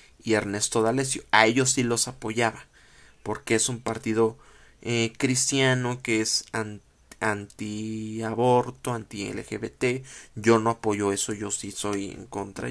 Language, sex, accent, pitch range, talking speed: Spanish, male, Mexican, 110-130 Hz, 135 wpm